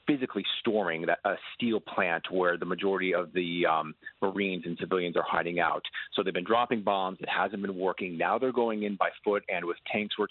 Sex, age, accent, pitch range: male, 40-59, American, 95-110 Hz